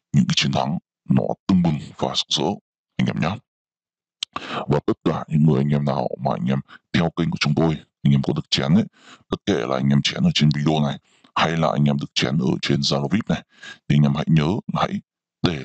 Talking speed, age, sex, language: 240 wpm, 20-39, female, Vietnamese